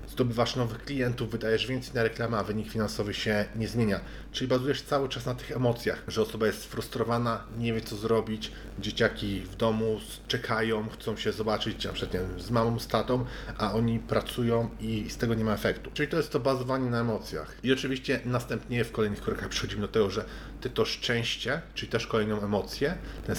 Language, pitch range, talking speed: Polish, 105-125 Hz, 185 wpm